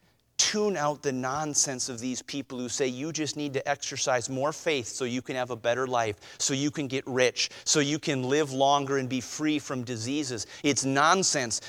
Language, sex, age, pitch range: English, male, 30-49, 105-155 Hz